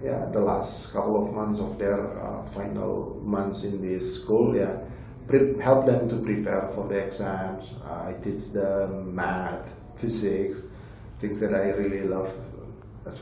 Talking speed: 165 wpm